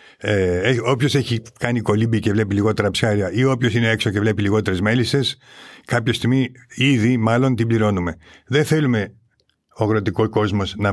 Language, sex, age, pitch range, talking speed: Greek, male, 50-69, 100-130 Hz, 160 wpm